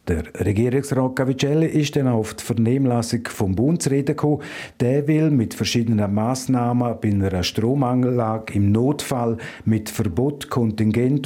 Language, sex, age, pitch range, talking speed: German, male, 50-69, 115-145 Hz, 125 wpm